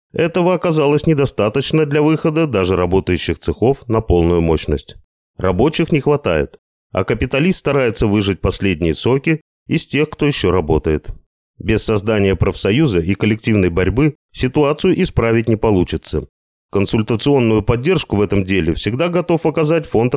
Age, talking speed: 30-49, 130 wpm